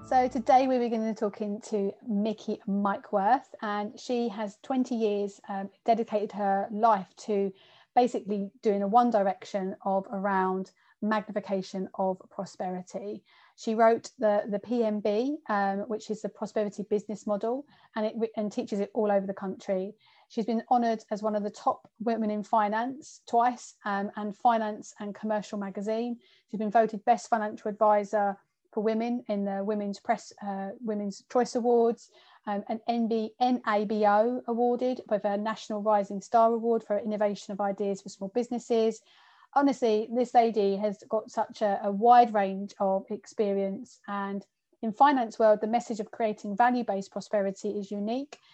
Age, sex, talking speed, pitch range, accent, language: 30-49, female, 155 wpm, 205-230 Hz, British, English